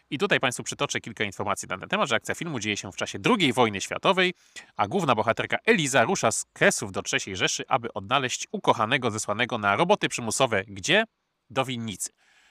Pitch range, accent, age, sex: 105-140 Hz, native, 30-49, male